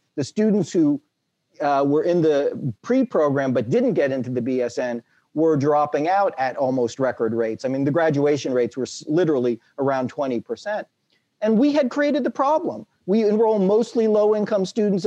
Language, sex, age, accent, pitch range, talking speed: English, male, 40-59, American, 155-210 Hz, 165 wpm